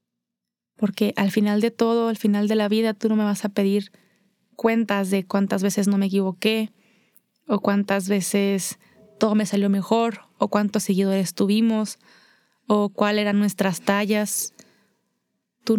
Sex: female